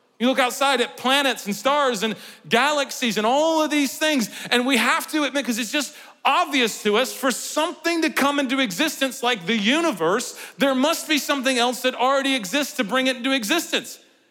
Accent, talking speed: American, 195 wpm